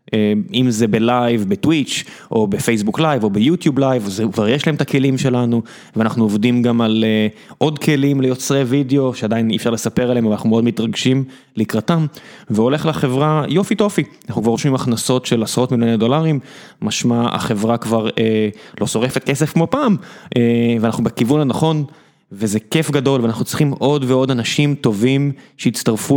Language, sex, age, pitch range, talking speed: Hebrew, male, 20-39, 115-145 Hz, 160 wpm